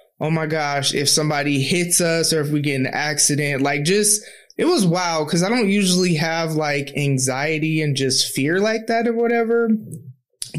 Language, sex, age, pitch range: English, male, 20-39, 150-205 Hz